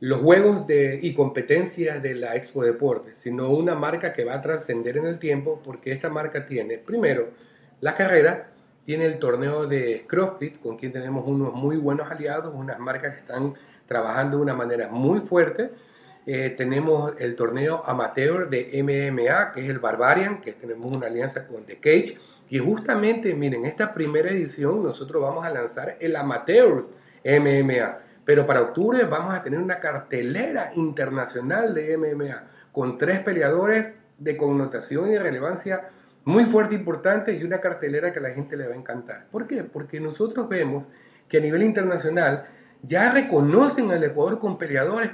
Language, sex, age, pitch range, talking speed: Spanish, male, 40-59, 135-190 Hz, 170 wpm